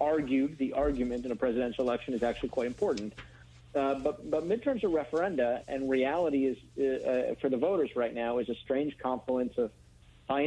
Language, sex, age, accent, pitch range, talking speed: English, male, 40-59, American, 115-135 Hz, 190 wpm